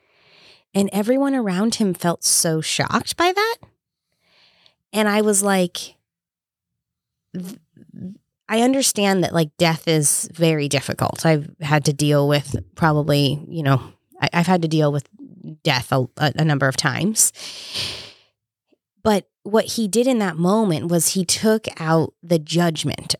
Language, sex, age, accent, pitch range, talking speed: English, female, 20-39, American, 150-185 Hz, 135 wpm